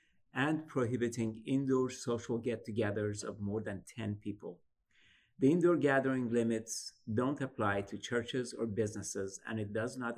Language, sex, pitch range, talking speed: English, male, 105-125 Hz, 140 wpm